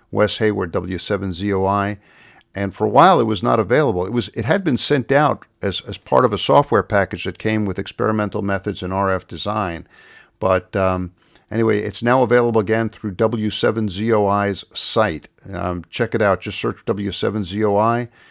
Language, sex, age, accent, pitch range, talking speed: English, male, 50-69, American, 95-115 Hz, 165 wpm